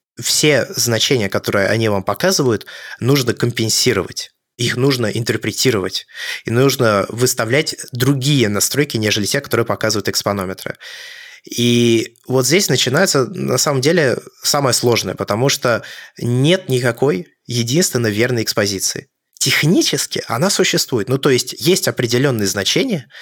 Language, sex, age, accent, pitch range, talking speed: Russian, male, 20-39, native, 110-135 Hz, 120 wpm